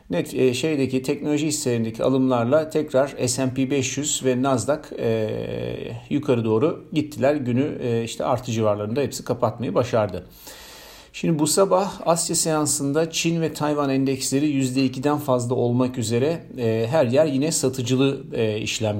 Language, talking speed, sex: Turkish, 135 wpm, male